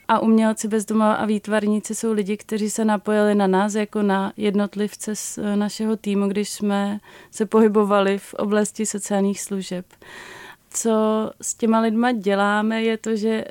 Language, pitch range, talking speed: Czech, 205-220 Hz, 150 wpm